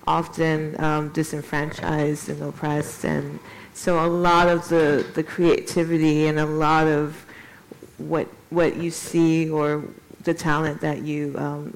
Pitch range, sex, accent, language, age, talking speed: 155-170 Hz, female, American, Swedish, 40-59, 140 wpm